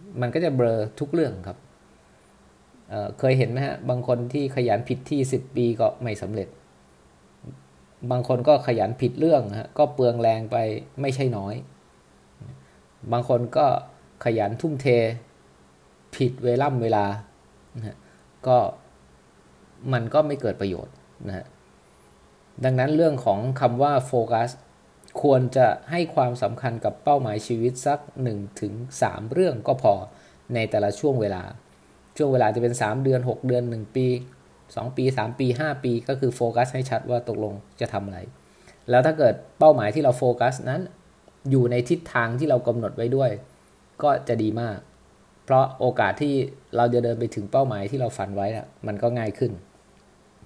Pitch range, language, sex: 105-130 Hz, English, male